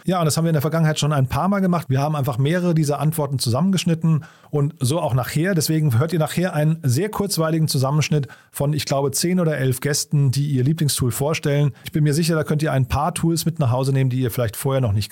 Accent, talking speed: German, 250 wpm